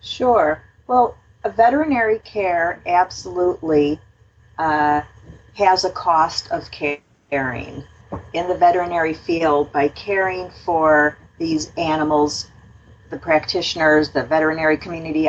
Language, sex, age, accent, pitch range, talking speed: English, female, 40-59, American, 145-185 Hz, 100 wpm